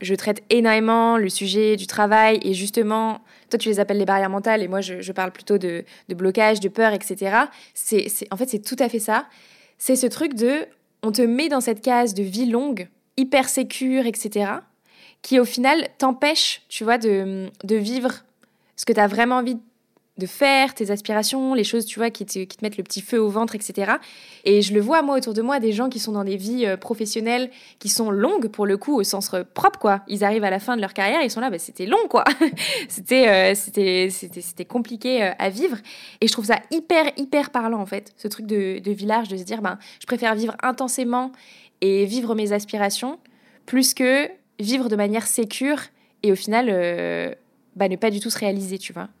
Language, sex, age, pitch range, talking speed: French, female, 20-39, 200-255 Hz, 225 wpm